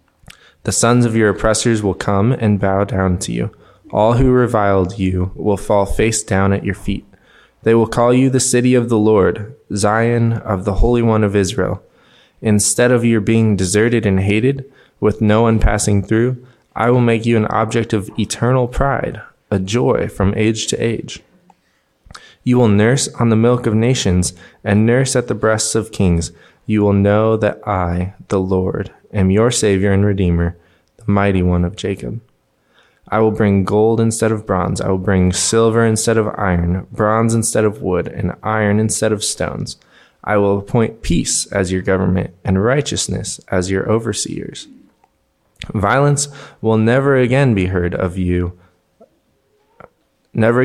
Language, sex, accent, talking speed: English, male, American, 170 wpm